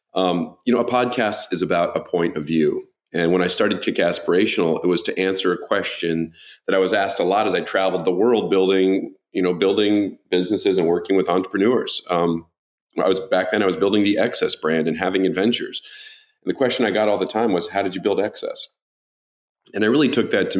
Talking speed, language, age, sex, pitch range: 225 wpm, English, 40-59, male, 85-120 Hz